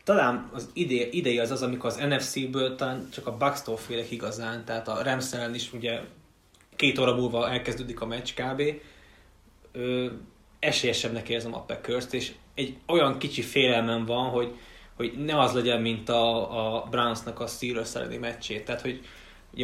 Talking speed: 160 wpm